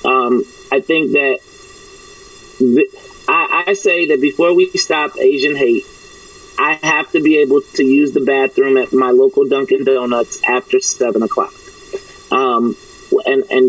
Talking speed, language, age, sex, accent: 145 wpm, English, 30-49, male, American